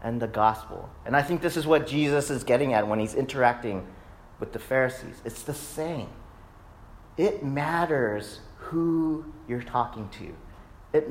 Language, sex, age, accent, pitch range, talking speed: English, male, 40-59, American, 100-155 Hz, 155 wpm